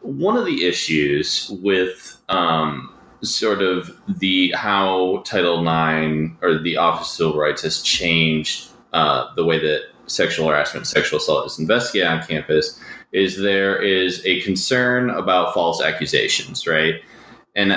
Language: English